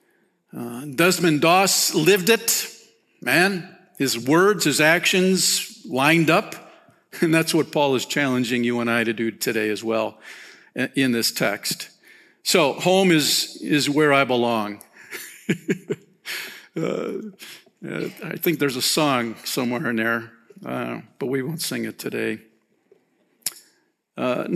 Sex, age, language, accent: male, 50-69, English, American